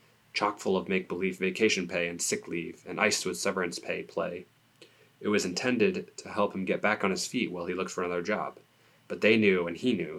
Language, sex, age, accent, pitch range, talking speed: English, male, 30-49, American, 90-105 Hz, 220 wpm